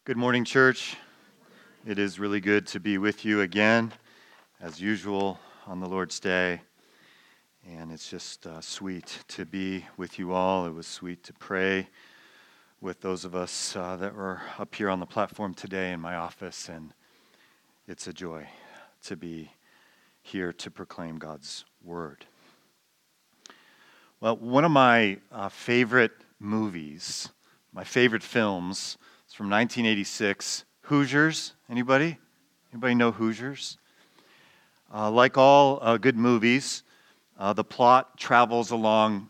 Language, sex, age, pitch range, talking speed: English, male, 40-59, 95-120 Hz, 135 wpm